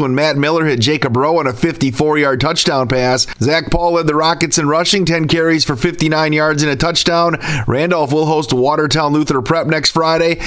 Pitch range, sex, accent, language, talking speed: 140-170 Hz, male, American, English, 195 wpm